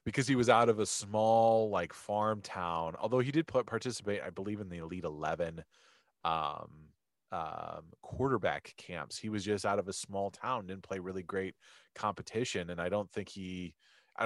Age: 30-49